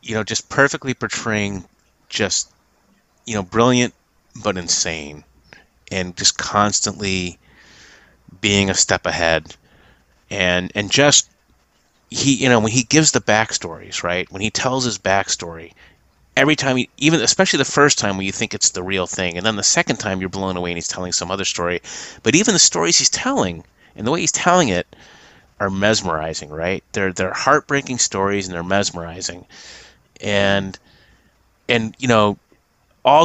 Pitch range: 90-120 Hz